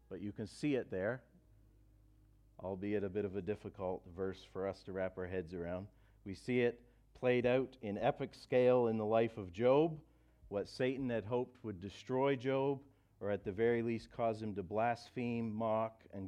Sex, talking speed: male, 190 wpm